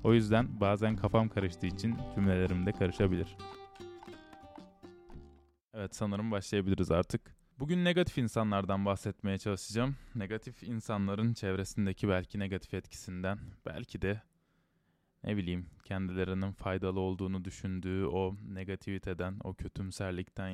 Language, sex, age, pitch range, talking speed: Turkish, male, 20-39, 95-110 Hz, 105 wpm